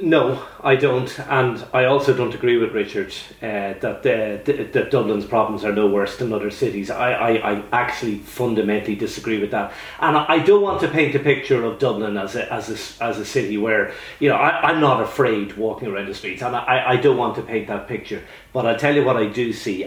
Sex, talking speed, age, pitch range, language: male, 215 wpm, 30-49, 110-145 Hz, English